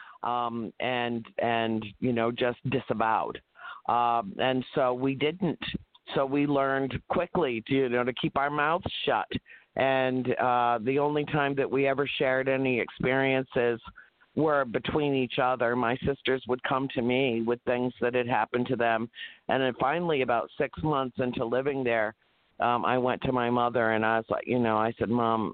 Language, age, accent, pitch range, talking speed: English, 50-69, American, 110-130 Hz, 180 wpm